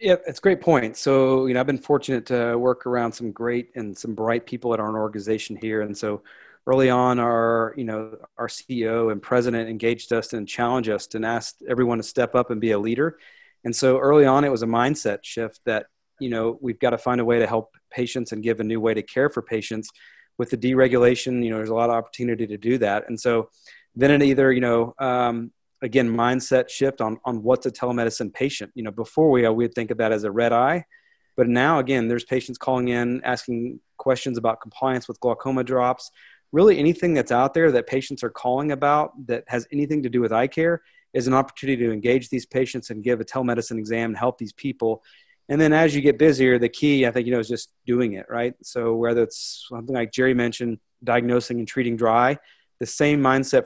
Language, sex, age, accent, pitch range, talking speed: English, male, 40-59, American, 115-130 Hz, 225 wpm